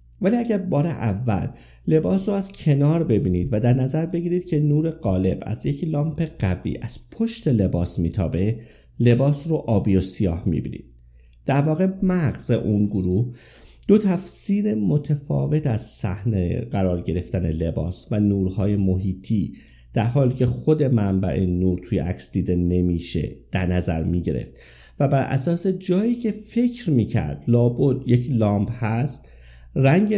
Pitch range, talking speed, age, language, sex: 95-155 Hz, 145 wpm, 50-69, Persian, male